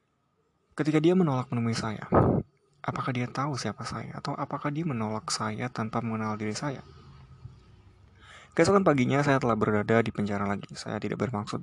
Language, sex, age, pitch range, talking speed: Indonesian, male, 20-39, 110-125 Hz, 155 wpm